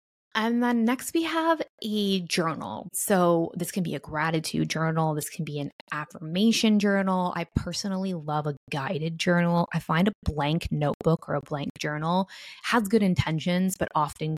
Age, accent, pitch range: 20-39, American, 150-185 Hz